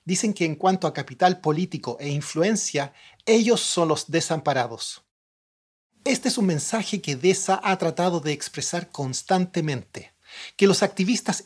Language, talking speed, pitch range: English, 140 wpm, 150-195 Hz